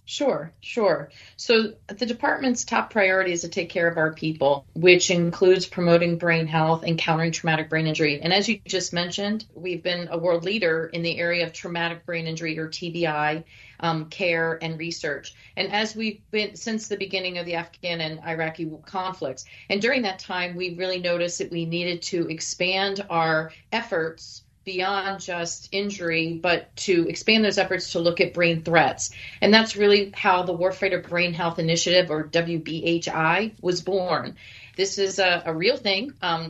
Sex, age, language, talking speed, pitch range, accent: female, 40-59, English, 175 wpm, 165-195 Hz, American